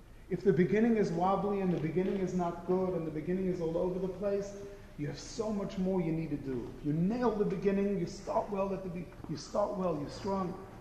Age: 40-59